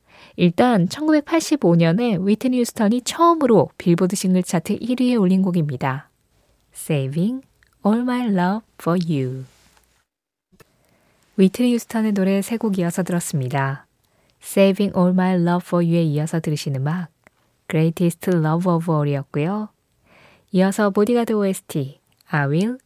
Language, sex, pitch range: Korean, female, 155-210 Hz